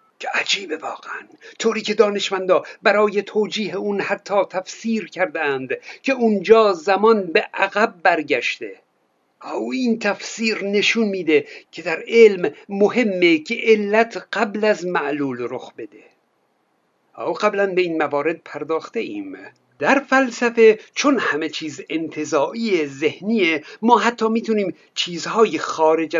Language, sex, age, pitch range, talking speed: Persian, male, 60-79, 175-240 Hz, 120 wpm